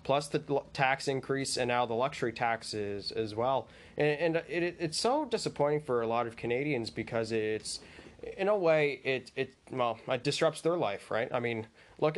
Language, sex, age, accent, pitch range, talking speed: English, male, 20-39, American, 120-150 Hz, 190 wpm